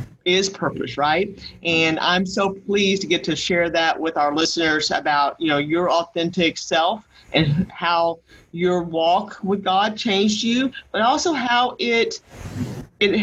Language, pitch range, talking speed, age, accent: English, 175-215 Hz, 155 wpm, 40-59, American